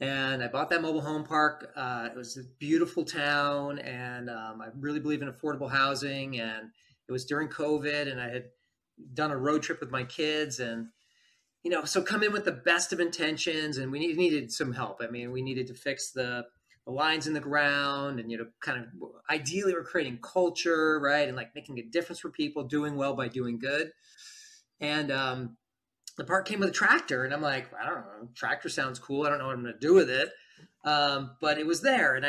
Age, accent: 30-49, American